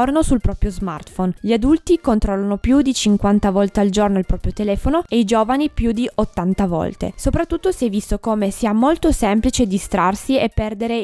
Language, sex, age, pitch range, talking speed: Italian, female, 20-39, 200-260 Hz, 180 wpm